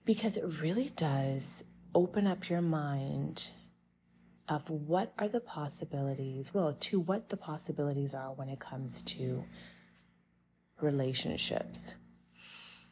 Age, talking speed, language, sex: 30-49, 110 wpm, English, female